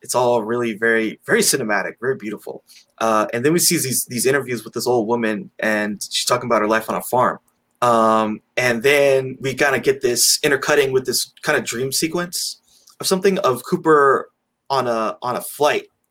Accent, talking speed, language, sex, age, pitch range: American, 195 wpm, English, male, 20-39, 115-155 Hz